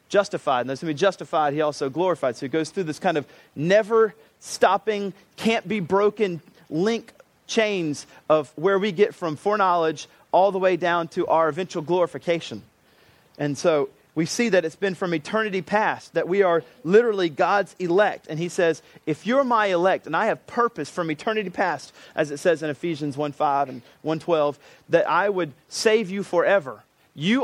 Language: English